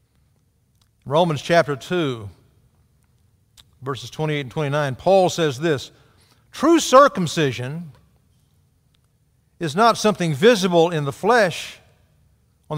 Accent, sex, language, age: American, male, English, 50-69